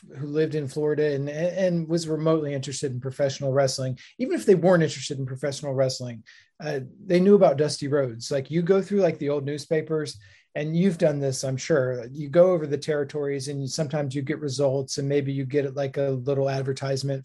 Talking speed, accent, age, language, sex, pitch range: 210 wpm, American, 30-49, English, male, 135-170 Hz